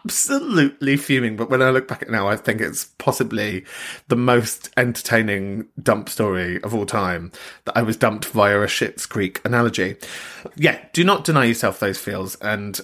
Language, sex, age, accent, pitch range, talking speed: English, male, 30-49, British, 110-145 Hz, 180 wpm